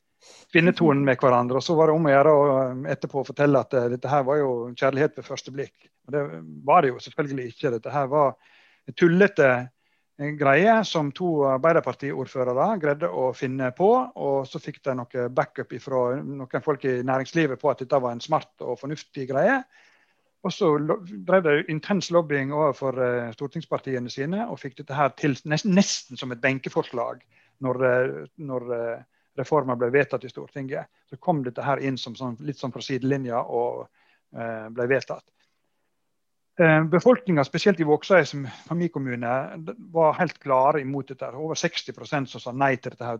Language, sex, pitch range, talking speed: English, male, 130-160 Hz, 170 wpm